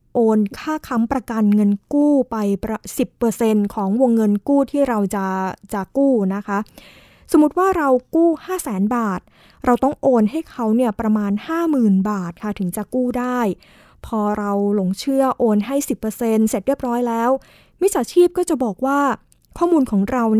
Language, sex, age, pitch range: Thai, female, 20-39, 210-260 Hz